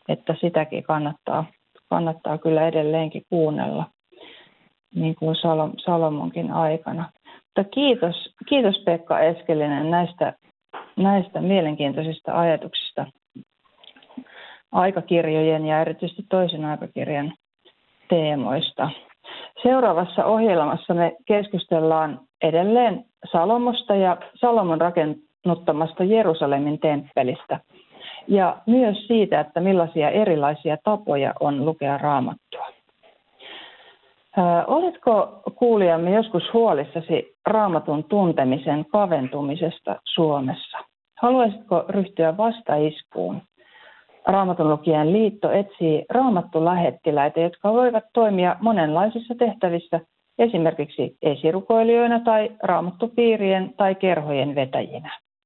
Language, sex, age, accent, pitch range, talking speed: Finnish, female, 30-49, native, 160-210 Hz, 80 wpm